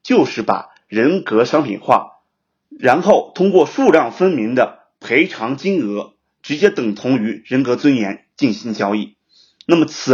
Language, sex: Chinese, male